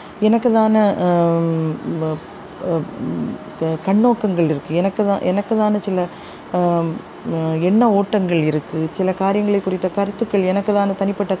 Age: 30-49